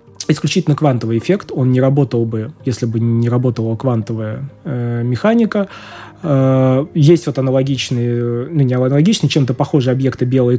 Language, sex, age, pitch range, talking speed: Russian, male, 20-39, 120-160 Hz, 140 wpm